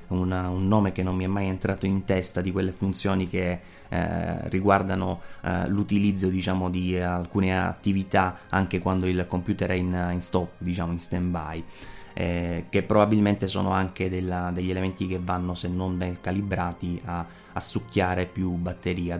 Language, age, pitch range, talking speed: Italian, 20-39, 90-100 Hz, 165 wpm